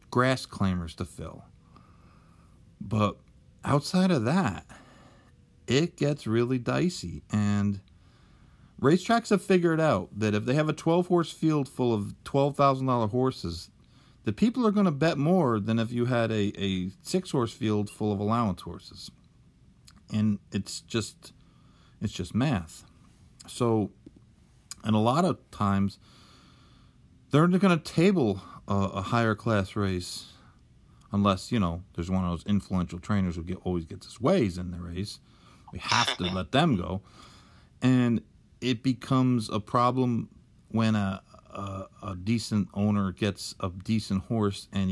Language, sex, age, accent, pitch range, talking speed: English, male, 50-69, American, 95-125 Hz, 145 wpm